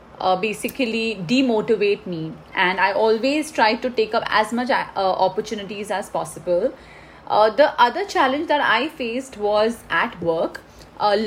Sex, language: female, English